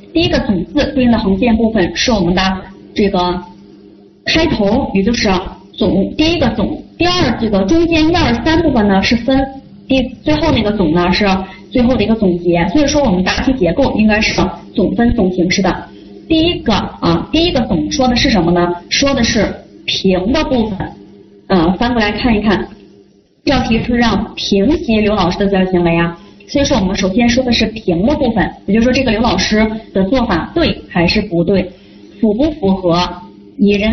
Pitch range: 185-250 Hz